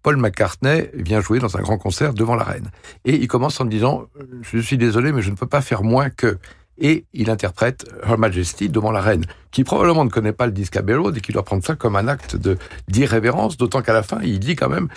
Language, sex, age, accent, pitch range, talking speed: French, male, 60-79, French, 100-125 Hz, 260 wpm